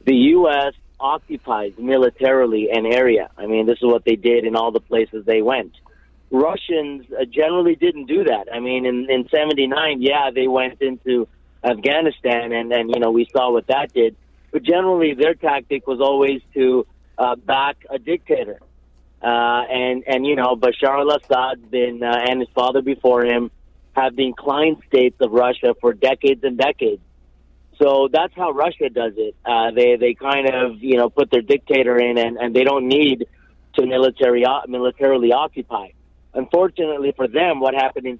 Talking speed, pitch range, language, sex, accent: 175 wpm, 120-140 Hz, English, male, American